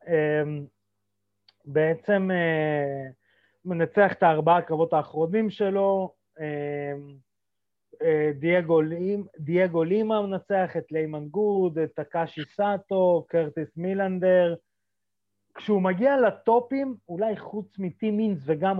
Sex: male